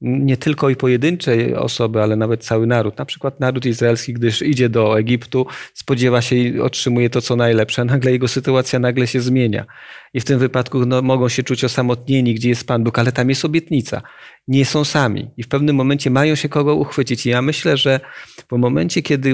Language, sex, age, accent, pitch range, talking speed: Polish, male, 40-59, native, 125-150 Hz, 200 wpm